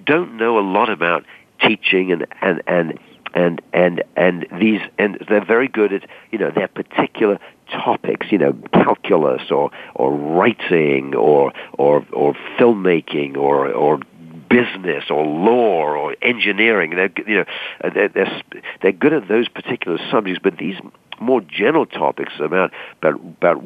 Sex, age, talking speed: male, 60-79, 150 wpm